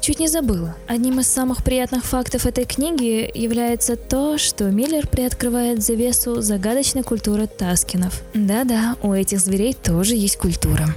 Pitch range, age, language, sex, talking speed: 195-250 Hz, 20-39, Russian, female, 140 wpm